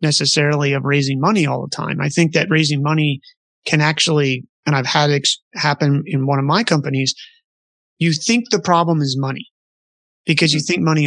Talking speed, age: 185 wpm, 30-49